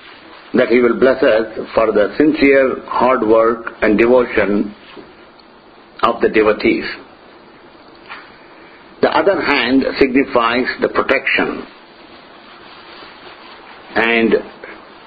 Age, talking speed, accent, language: 60-79, 90 wpm, Indian, English